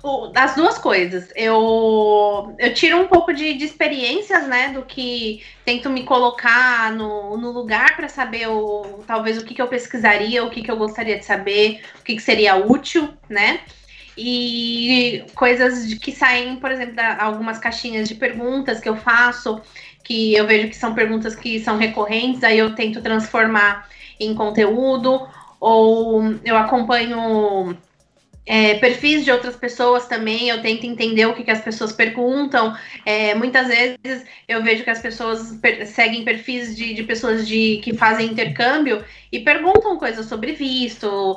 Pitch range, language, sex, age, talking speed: 215-250 Hz, Portuguese, female, 20-39, 155 wpm